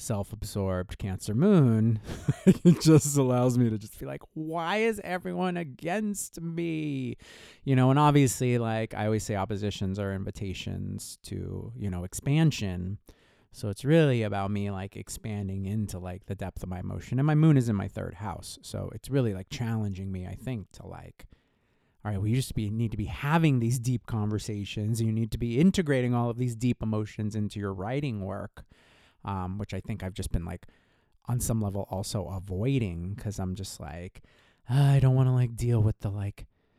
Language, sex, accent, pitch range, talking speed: English, male, American, 100-130 Hz, 185 wpm